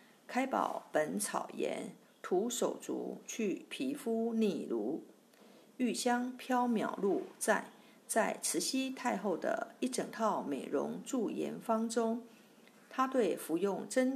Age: 50-69